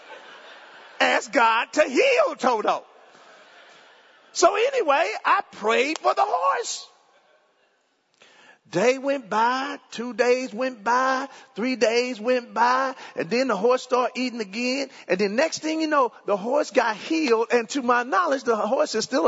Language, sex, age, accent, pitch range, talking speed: English, male, 40-59, American, 200-300 Hz, 150 wpm